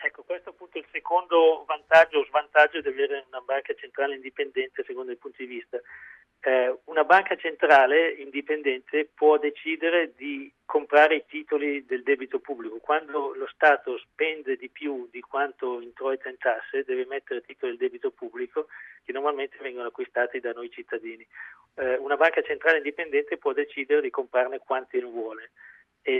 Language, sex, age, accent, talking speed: Italian, male, 40-59, native, 165 wpm